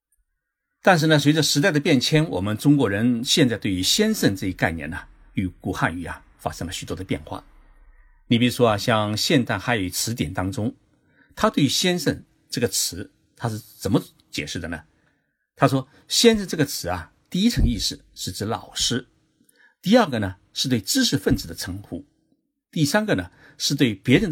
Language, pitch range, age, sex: Chinese, 105-160 Hz, 50-69, male